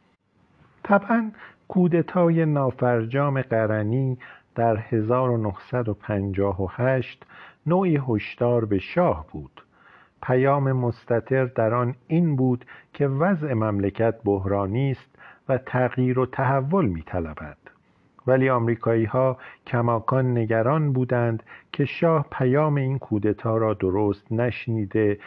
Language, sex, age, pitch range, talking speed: Persian, male, 50-69, 110-135 Hz, 95 wpm